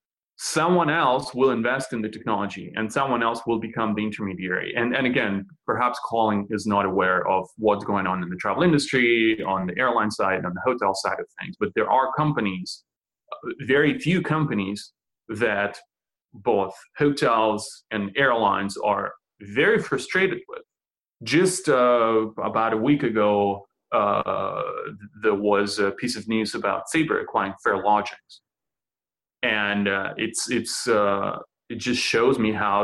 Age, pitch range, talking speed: 30-49, 100-130 Hz, 155 wpm